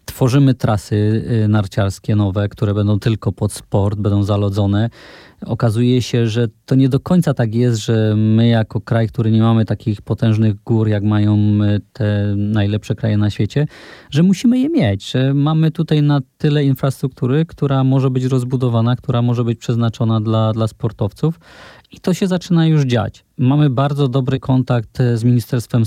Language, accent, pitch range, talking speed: Polish, native, 105-130 Hz, 160 wpm